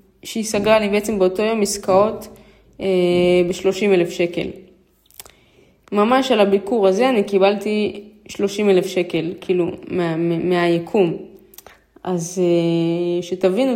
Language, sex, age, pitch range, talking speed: Hebrew, female, 20-39, 180-220 Hz, 105 wpm